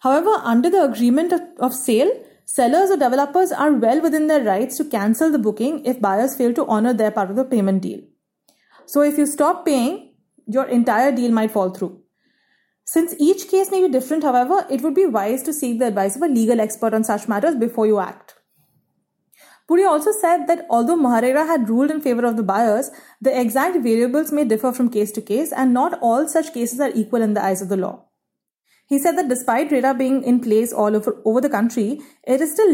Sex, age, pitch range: female, 30-49, 225-305 Hz